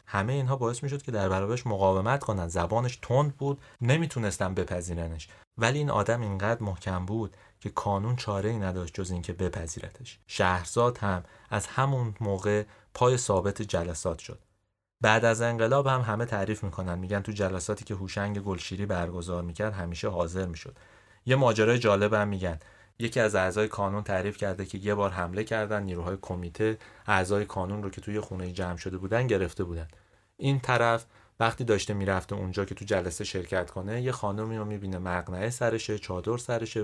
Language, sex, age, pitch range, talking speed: Persian, male, 30-49, 95-115 Hz, 170 wpm